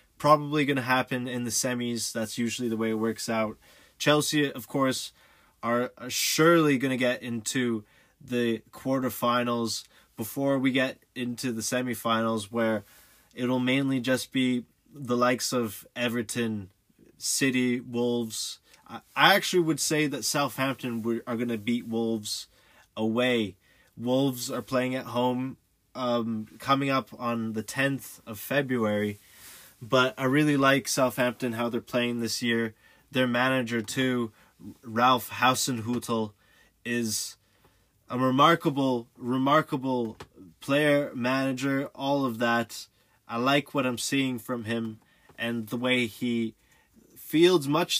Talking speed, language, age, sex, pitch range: 130 wpm, English, 20-39, male, 115-135 Hz